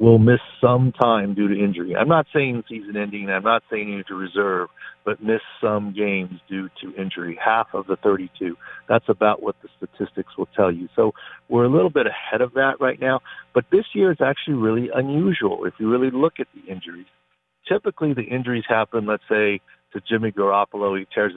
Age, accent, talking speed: 50-69, American, 200 wpm